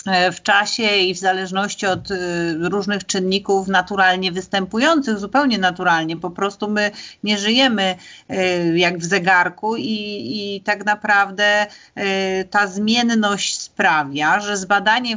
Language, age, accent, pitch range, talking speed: Polish, 40-59, native, 185-220 Hz, 115 wpm